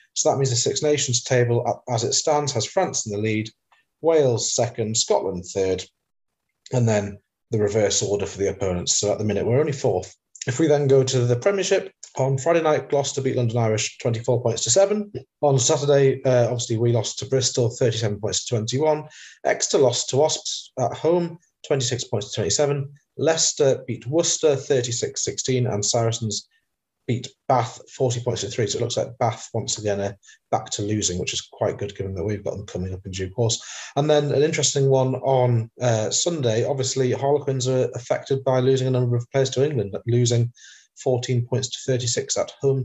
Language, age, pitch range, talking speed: English, 30-49, 115-140 Hz, 195 wpm